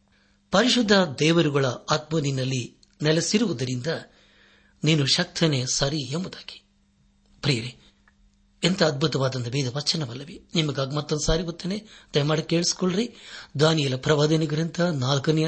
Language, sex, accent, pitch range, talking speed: Kannada, male, native, 125-170 Hz, 85 wpm